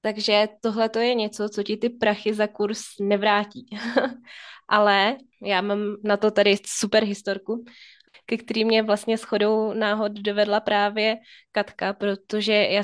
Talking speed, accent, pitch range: 140 wpm, native, 205-225 Hz